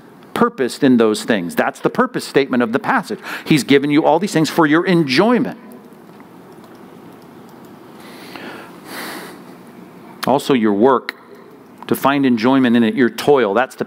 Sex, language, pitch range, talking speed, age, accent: male, English, 135-205 Hz, 140 wpm, 50-69, American